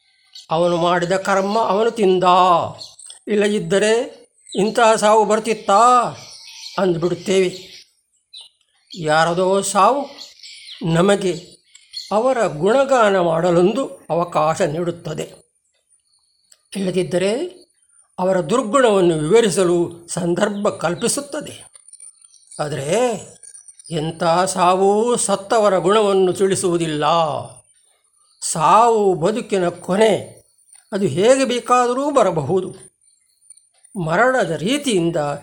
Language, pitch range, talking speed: Kannada, 175-230 Hz, 65 wpm